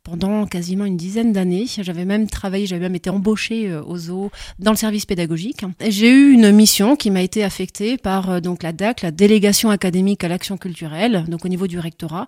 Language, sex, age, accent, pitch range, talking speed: French, female, 30-49, French, 185-225 Hz, 200 wpm